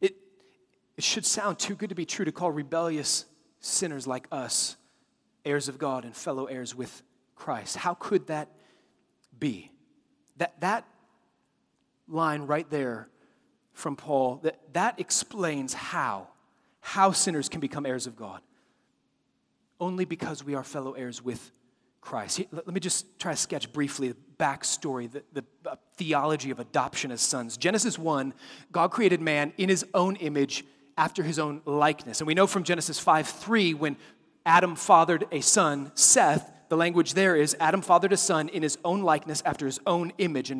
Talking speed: 170 wpm